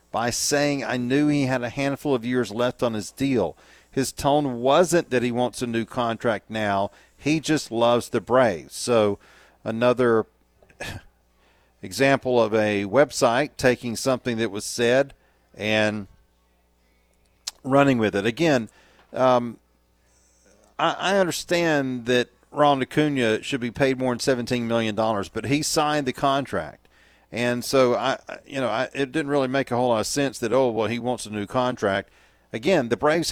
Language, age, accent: English, 40-59, American